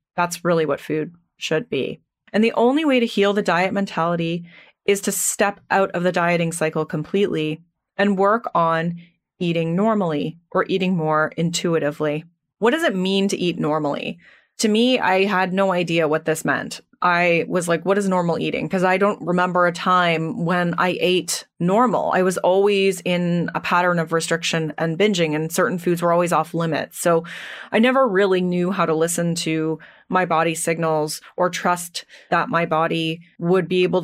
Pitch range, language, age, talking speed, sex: 165-200 Hz, English, 30-49, 180 wpm, female